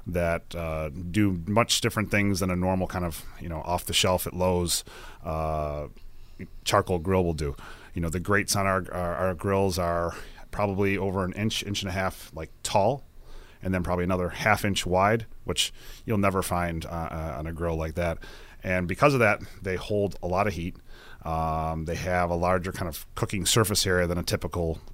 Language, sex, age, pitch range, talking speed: English, male, 30-49, 85-105 Hz, 190 wpm